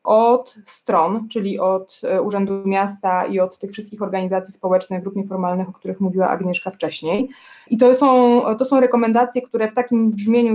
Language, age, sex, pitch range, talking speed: Polish, 20-39, female, 190-240 Hz, 165 wpm